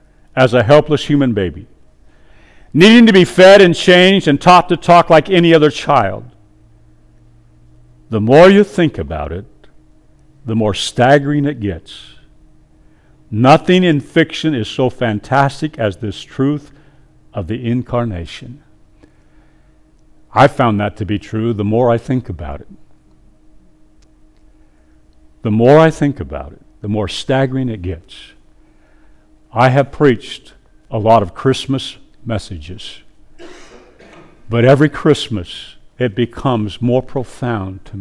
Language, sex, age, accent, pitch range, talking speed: English, male, 60-79, American, 100-140 Hz, 130 wpm